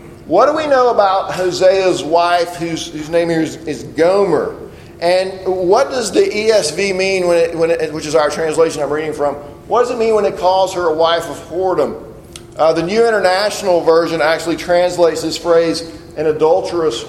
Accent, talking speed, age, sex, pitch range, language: American, 190 wpm, 40-59, male, 155-185 Hz, English